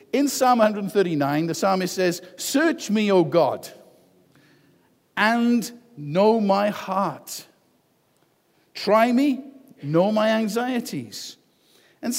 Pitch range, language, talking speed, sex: 155-215 Hz, English, 100 wpm, male